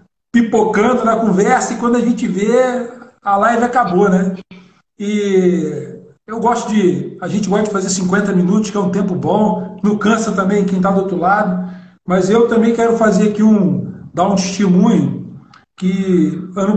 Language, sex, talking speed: Portuguese, male, 170 wpm